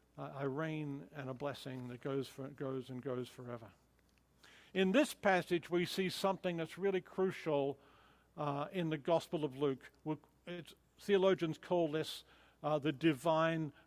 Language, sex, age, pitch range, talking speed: English, male, 50-69, 145-175 Hz, 145 wpm